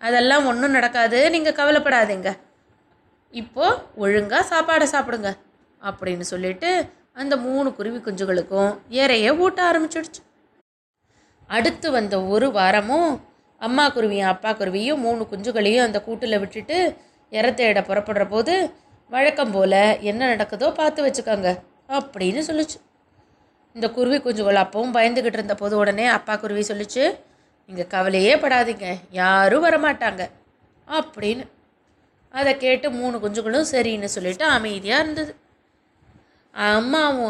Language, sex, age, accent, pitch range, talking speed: Tamil, female, 20-39, native, 205-295 Hz, 110 wpm